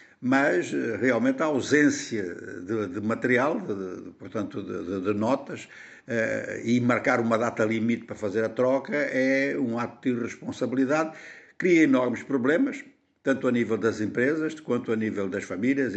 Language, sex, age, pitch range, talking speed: Portuguese, male, 60-79, 115-165 Hz, 150 wpm